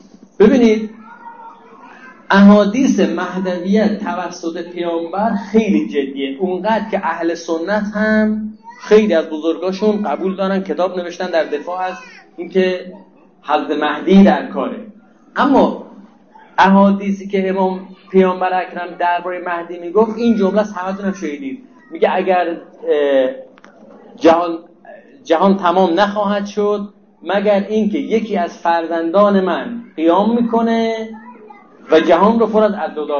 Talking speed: 110 wpm